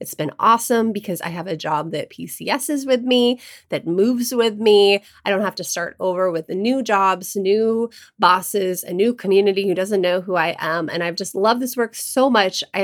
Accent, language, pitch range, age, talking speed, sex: American, English, 175-230 Hz, 20-39, 220 wpm, female